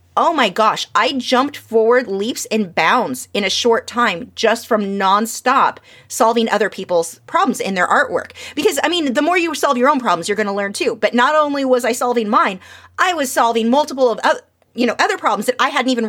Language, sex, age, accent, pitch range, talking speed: English, female, 30-49, American, 215-255 Hz, 220 wpm